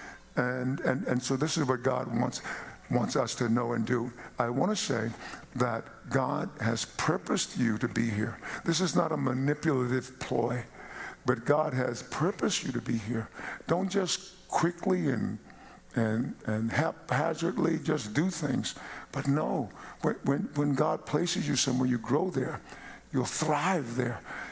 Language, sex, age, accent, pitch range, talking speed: English, male, 60-79, American, 120-150 Hz, 160 wpm